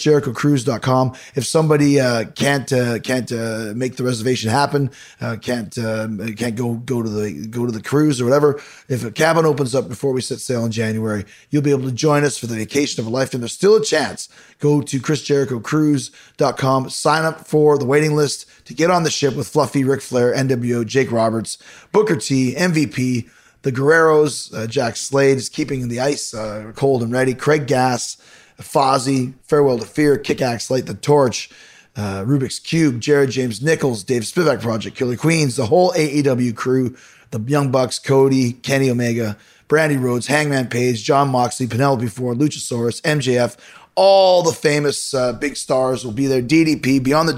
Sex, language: male, English